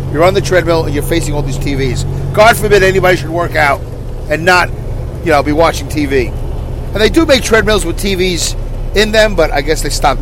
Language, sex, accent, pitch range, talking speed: English, male, American, 120-170 Hz, 215 wpm